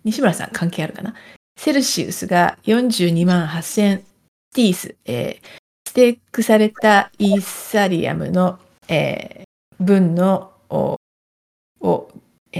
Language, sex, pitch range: Japanese, female, 185-220 Hz